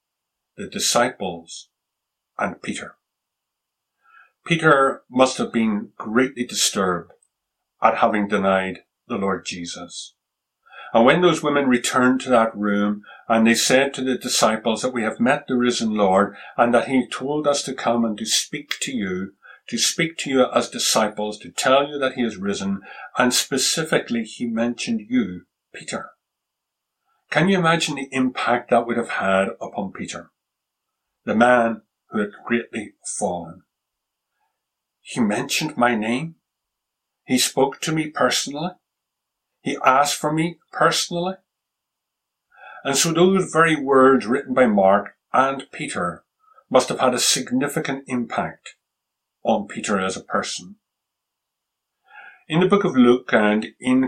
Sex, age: male, 50-69